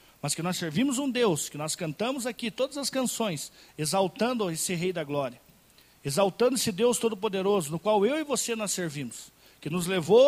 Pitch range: 185-265 Hz